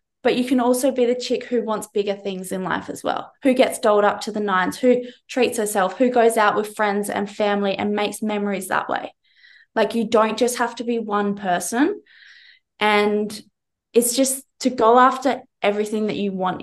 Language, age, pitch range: English, 20-39, 200-235 Hz